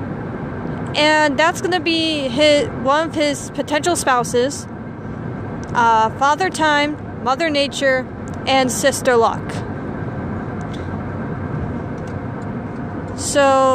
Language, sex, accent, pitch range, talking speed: English, female, American, 245-305 Hz, 85 wpm